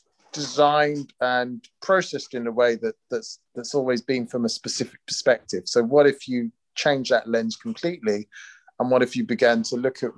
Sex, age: male, 30-49